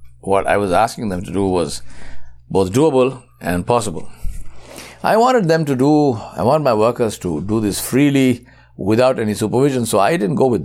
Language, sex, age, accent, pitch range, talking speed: English, male, 60-79, Indian, 85-130 Hz, 185 wpm